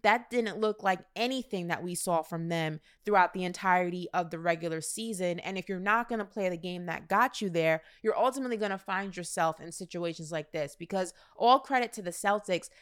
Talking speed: 205 wpm